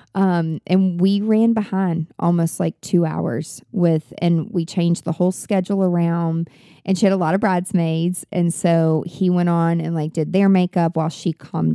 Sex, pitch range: female, 165-200 Hz